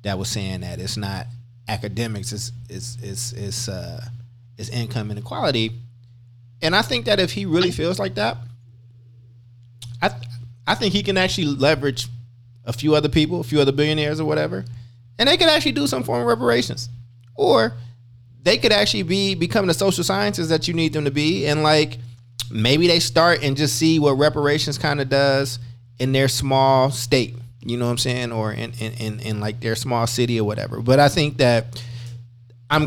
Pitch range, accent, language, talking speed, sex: 120-140 Hz, American, English, 190 wpm, male